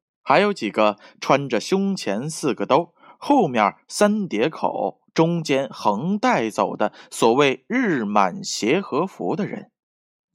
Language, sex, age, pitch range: Chinese, male, 20-39, 115-185 Hz